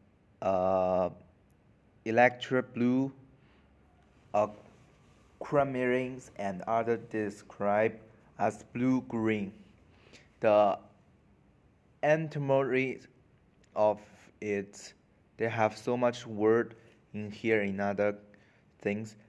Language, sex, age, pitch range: Chinese, male, 20-39, 105-125 Hz